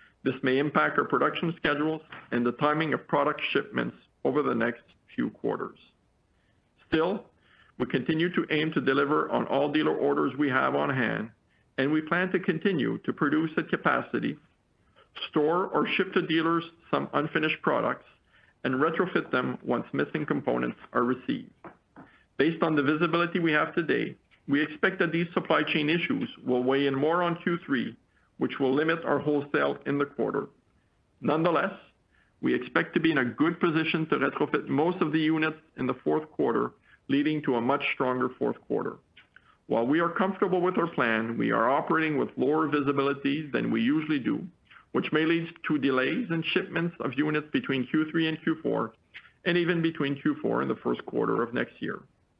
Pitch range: 140-170 Hz